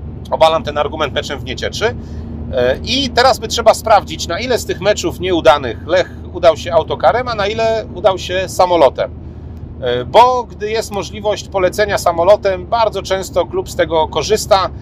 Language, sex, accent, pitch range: Polish, male, native, 145-190 Hz